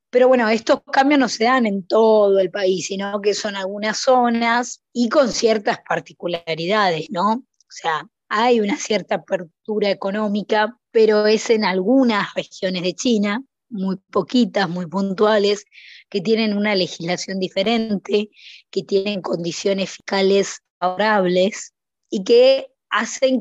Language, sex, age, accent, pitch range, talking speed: Spanish, female, 20-39, Argentinian, 190-235 Hz, 135 wpm